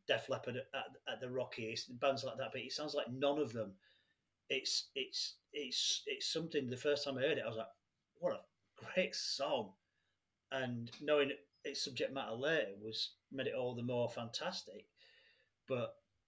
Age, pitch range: 40-59, 115-145 Hz